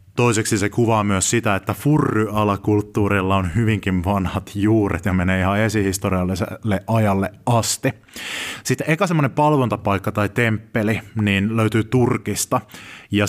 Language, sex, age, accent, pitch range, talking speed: Finnish, male, 20-39, native, 100-115 Hz, 120 wpm